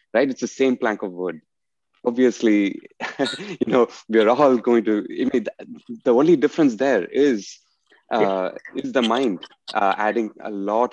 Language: English